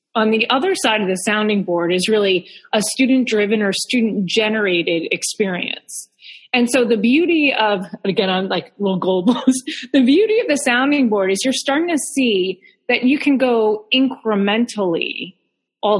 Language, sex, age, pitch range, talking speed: English, female, 30-49, 200-250 Hz, 160 wpm